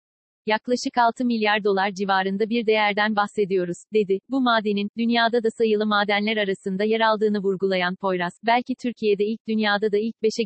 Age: 40-59